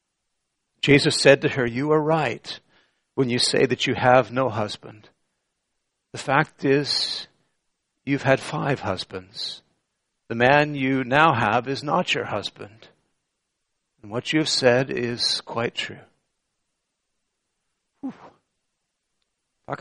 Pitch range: 140-195 Hz